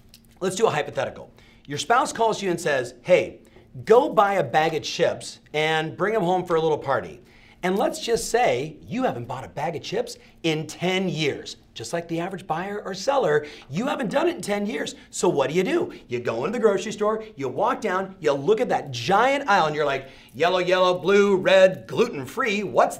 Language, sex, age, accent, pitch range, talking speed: English, male, 40-59, American, 160-225 Hz, 215 wpm